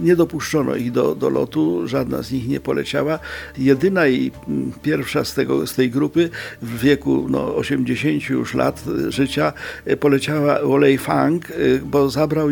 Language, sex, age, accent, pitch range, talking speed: Polish, male, 50-69, native, 125-145 Hz, 150 wpm